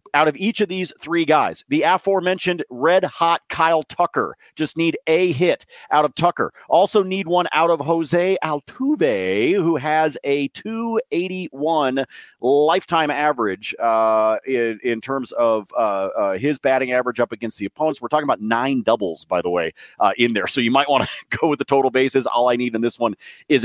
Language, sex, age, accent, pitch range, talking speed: English, male, 40-59, American, 135-185 Hz, 190 wpm